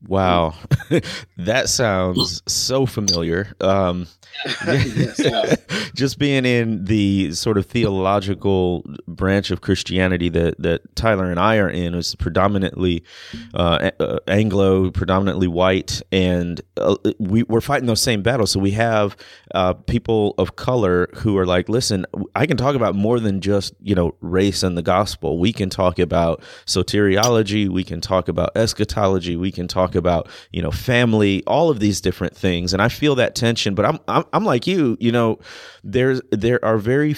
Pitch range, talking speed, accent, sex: 95-115 Hz, 165 wpm, American, male